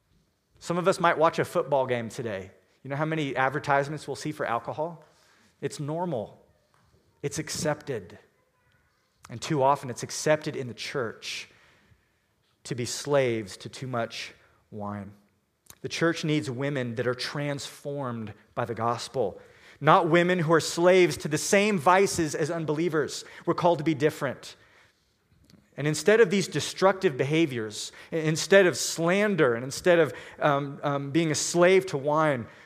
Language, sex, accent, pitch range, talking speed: English, male, American, 135-175 Hz, 150 wpm